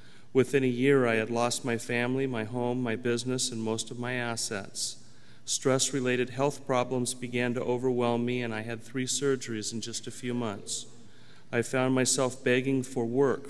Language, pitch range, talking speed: English, 115-130 Hz, 180 wpm